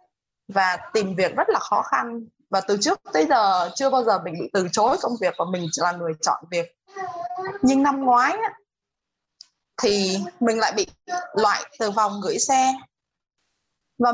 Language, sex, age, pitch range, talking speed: Vietnamese, female, 20-39, 200-295 Hz, 170 wpm